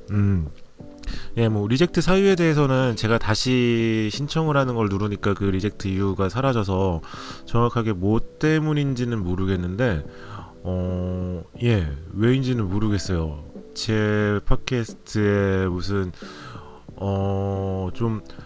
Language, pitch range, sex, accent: Korean, 95-120 Hz, male, native